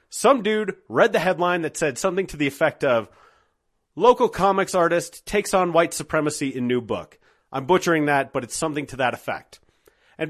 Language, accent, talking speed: English, American, 185 wpm